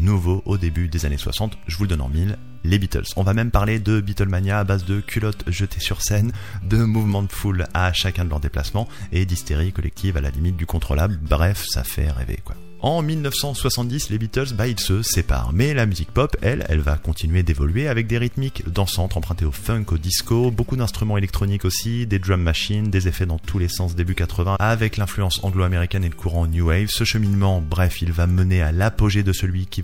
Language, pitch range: French, 85-100 Hz